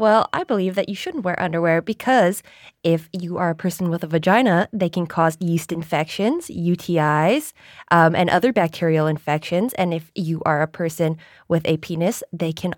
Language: English